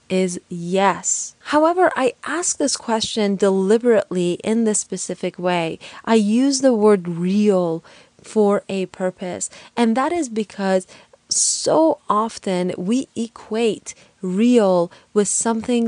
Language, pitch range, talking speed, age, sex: English, 195-245 Hz, 115 wpm, 20-39, female